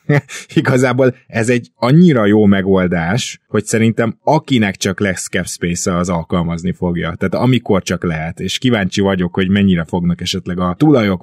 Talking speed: 155 wpm